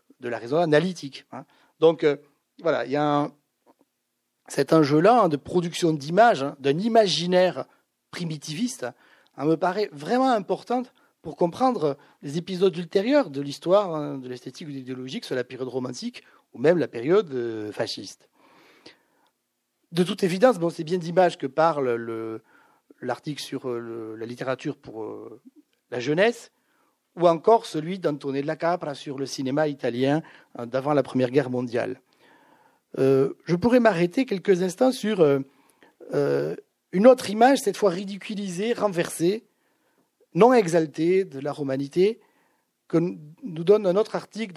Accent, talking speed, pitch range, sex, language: French, 150 wpm, 140-200 Hz, male, French